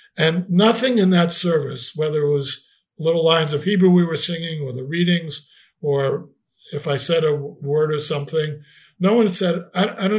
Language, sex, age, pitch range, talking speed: English, male, 60-79, 145-190 Hz, 190 wpm